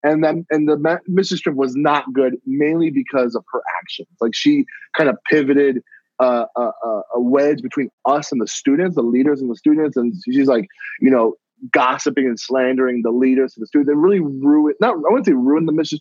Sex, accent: male, American